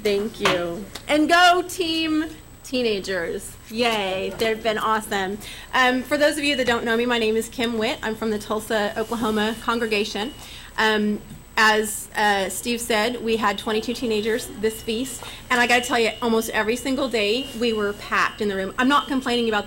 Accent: American